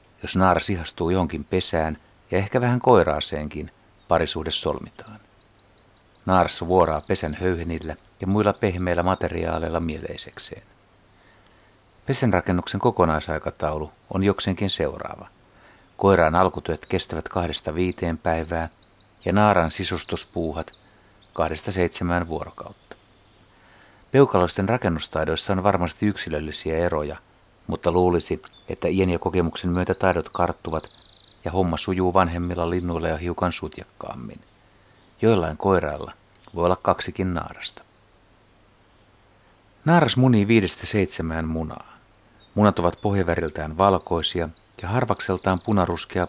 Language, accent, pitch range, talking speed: Finnish, native, 85-105 Hz, 100 wpm